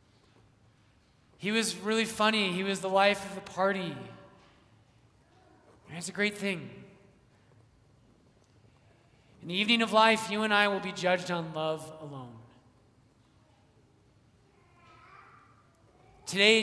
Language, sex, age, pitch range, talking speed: English, male, 30-49, 130-200 Hz, 110 wpm